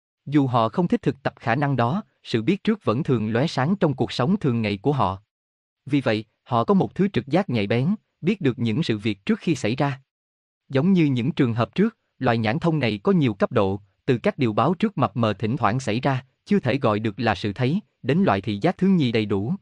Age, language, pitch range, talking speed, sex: 20-39, Vietnamese, 115-155 Hz, 250 wpm, male